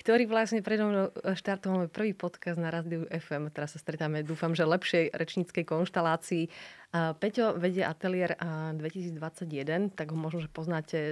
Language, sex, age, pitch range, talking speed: Slovak, female, 20-39, 155-180 Hz, 130 wpm